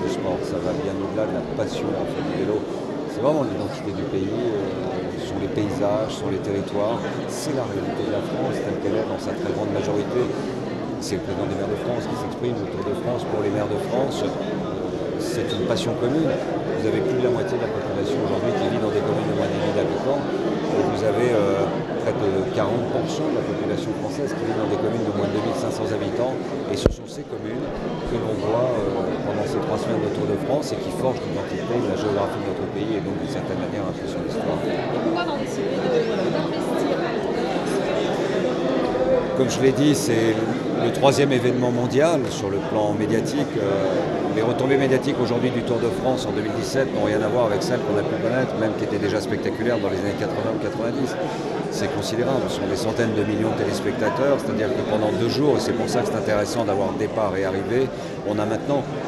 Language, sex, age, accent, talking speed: French, male, 50-69, French, 205 wpm